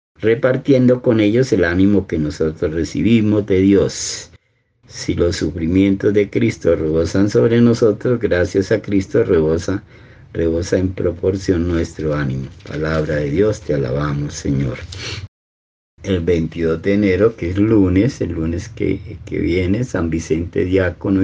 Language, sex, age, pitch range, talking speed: Spanish, male, 50-69, 80-100 Hz, 135 wpm